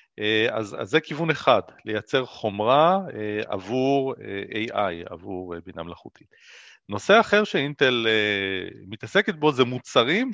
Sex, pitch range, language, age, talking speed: male, 110-160 Hz, Hebrew, 40-59, 135 wpm